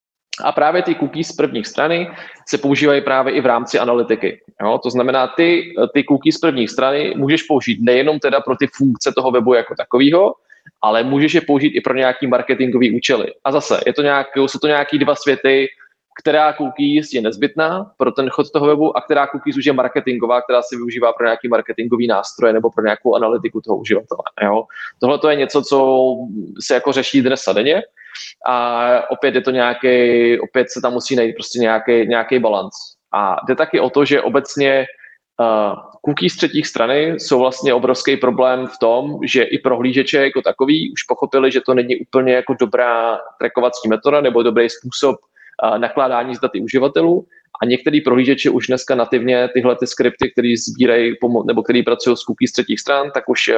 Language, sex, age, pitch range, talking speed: Czech, male, 20-39, 120-145 Hz, 190 wpm